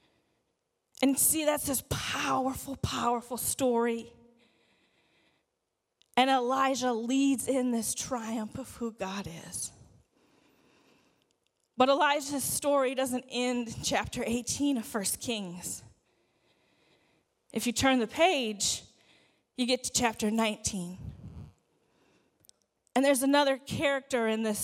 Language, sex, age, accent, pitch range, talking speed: English, female, 20-39, American, 220-270 Hz, 105 wpm